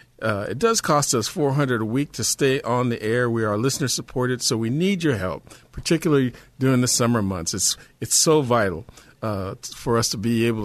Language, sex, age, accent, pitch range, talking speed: English, male, 50-69, American, 115-145 Hz, 215 wpm